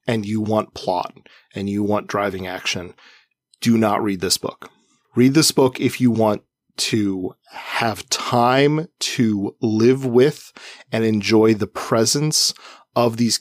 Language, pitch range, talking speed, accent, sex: English, 105-130 Hz, 145 wpm, American, male